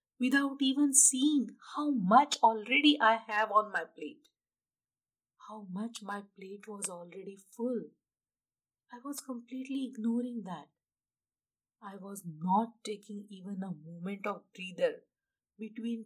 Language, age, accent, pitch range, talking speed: English, 50-69, Indian, 195-260 Hz, 125 wpm